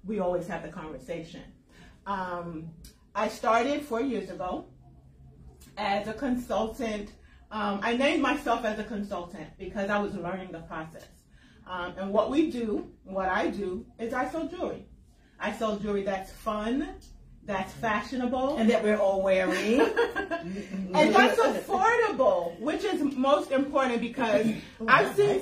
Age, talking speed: 30-49, 145 wpm